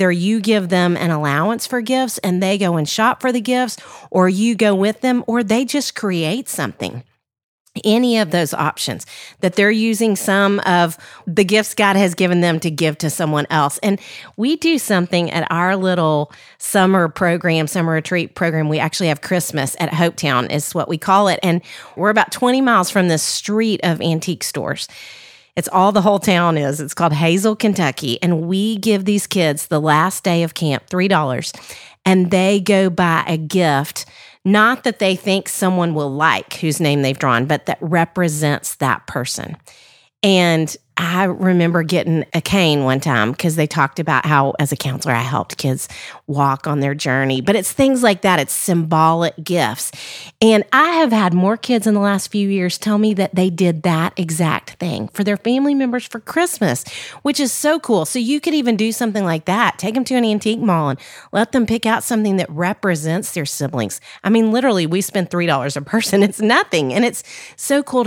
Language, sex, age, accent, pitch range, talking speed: English, female, 40-59, American, 160-210 Hz, 195 wpm